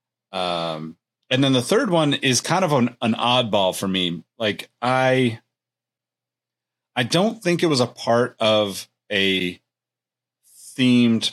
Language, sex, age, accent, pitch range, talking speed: English, male, 30-49, American, 95-125 Hz, 140 wpm